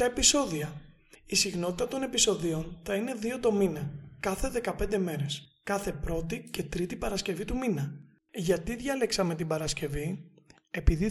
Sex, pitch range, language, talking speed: male, 160-205 Hz, Greek, 140 wpm